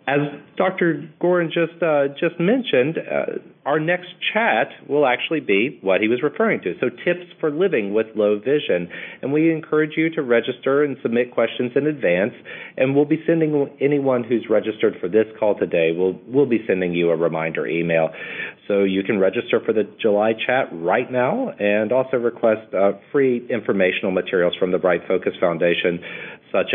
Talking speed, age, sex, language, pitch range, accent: 175 wpm, 40-59, male, English, 90-145 Hz, American